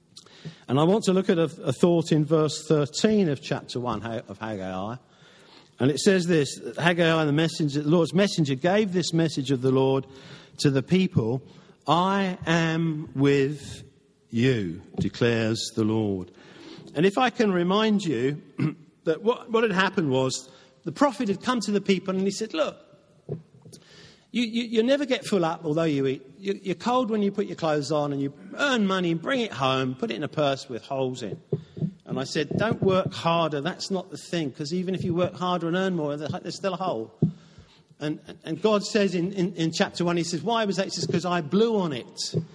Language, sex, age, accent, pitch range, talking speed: English, male, 50-69, British, 145-190 Hz, 200 wpm